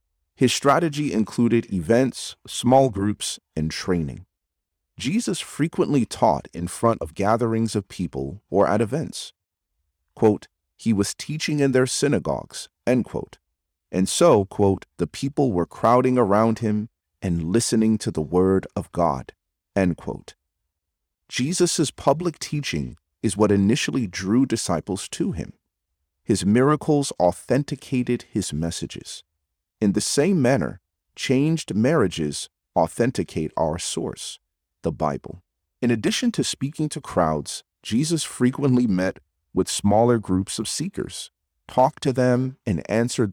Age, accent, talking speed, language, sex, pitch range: 40-59, American, 125 wpm, English, male, 80-125 Hz